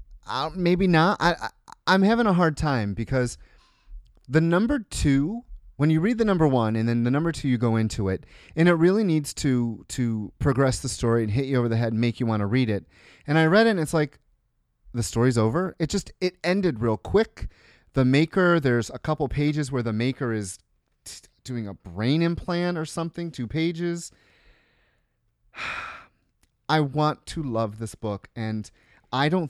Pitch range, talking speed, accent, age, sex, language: 115-155 Hz, 190 wpm, American, 30-49, male, English